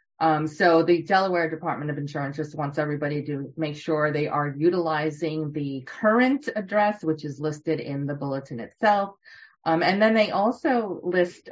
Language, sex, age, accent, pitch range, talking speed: English, female, 30-49, American, 150-185 Hz, 165 wpm